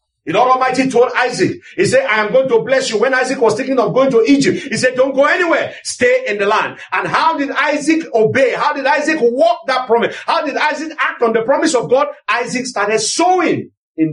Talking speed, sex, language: 230 wpm, male, English